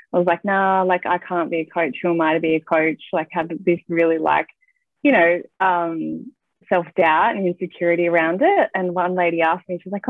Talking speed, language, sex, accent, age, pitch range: 230 wpm, English, female, Australian, 20-39, 165-190 Hz